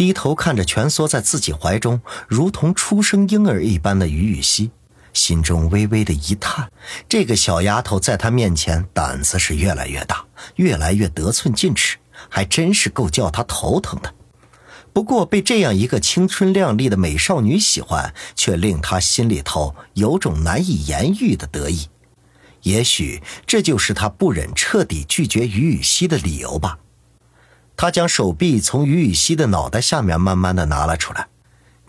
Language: Chinese